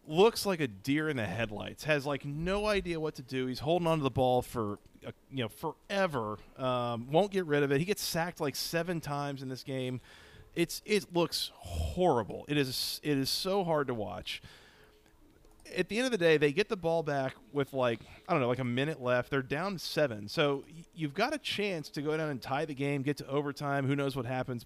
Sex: male